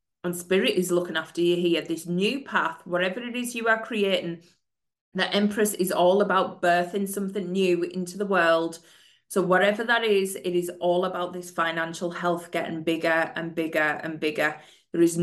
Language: English